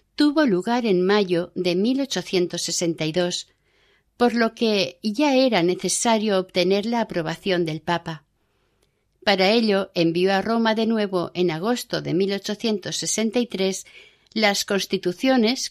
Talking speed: 115 wpm